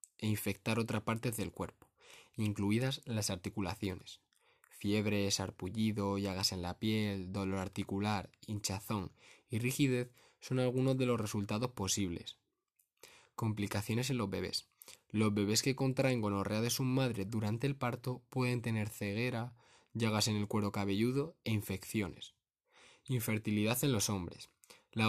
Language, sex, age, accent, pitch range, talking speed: Spanish, male, 20-39, Spanish, 100-125 Hz, 135 wpm